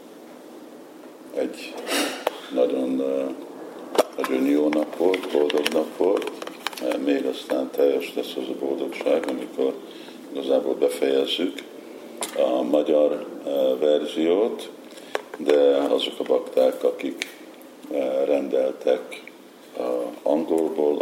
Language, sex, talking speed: Hungarian, male, 85 wpm